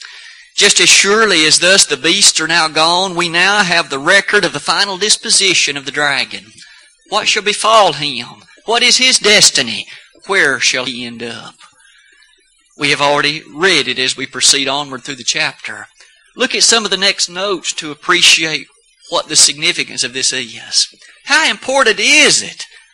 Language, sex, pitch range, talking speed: English, male, 145-220 Hz, 175 wpm